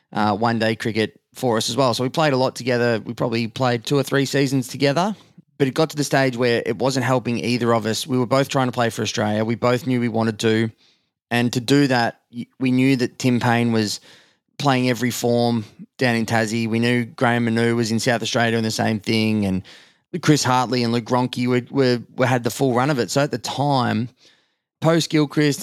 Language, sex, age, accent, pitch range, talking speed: English, male, 20-39, Australian, 115-135 Hz, 225 wpm